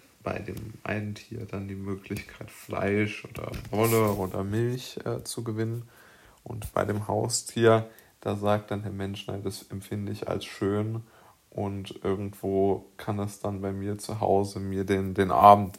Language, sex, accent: German, male, German